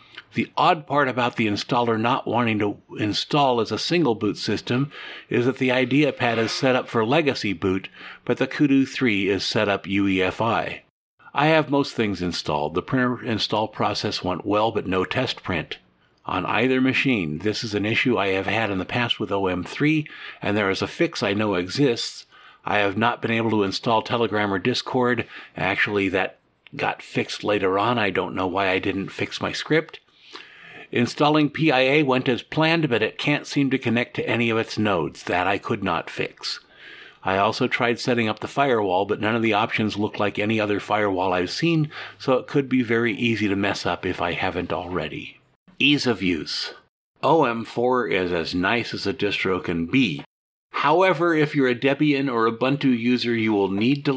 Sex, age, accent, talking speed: male, 50-69, American, 190 wpm